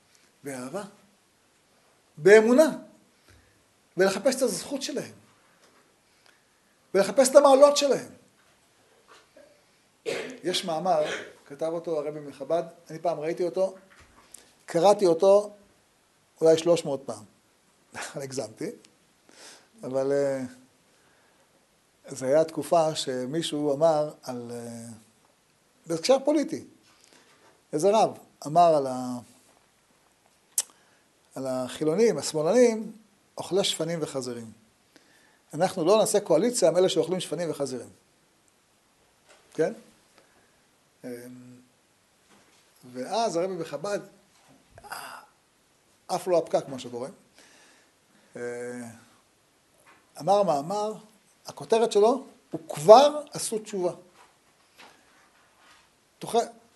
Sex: male